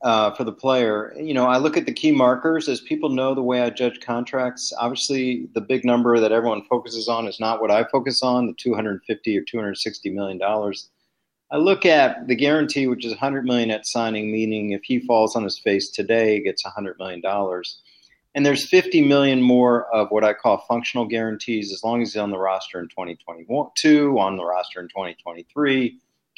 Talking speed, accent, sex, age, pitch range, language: 195 wpm, American, male, 40-59, 105-130 Hz, English